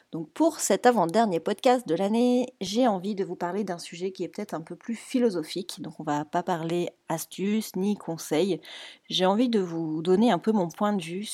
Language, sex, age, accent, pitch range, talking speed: French, female, 40-59, French, 165-200 Hz, 215 wpm